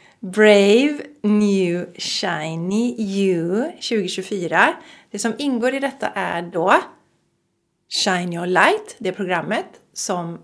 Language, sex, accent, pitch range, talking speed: Swedish, female, native, 175-225 Hz, 110 wpm